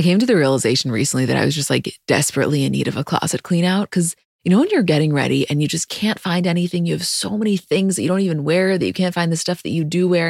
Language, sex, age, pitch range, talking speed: English, female, 20-39, 145-180 Hz, 305 wpm